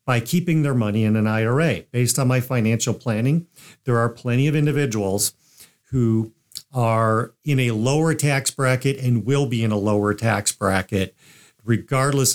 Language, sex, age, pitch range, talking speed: English, male, 50-69, 110-145 Hz, 160 wpm